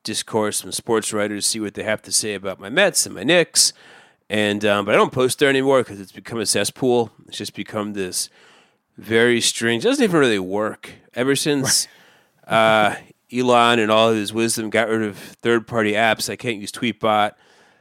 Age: 30-49